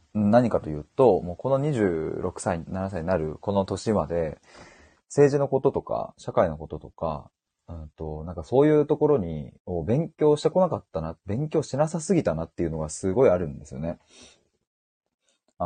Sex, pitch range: male, 85-120 Hz